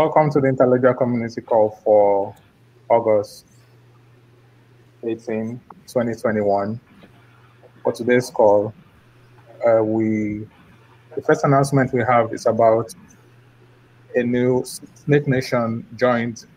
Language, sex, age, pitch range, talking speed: English, male, 20-39, 105-125 Hz, 100 wpm